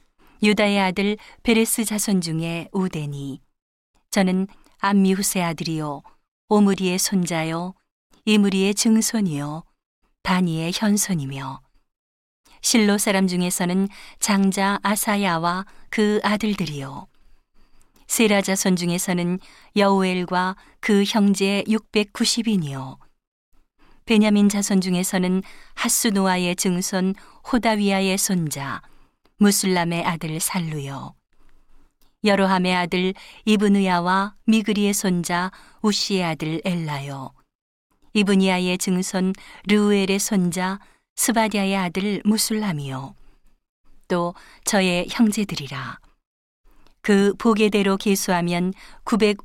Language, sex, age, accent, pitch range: Korean, female, 40-59, native, 175-210 Hz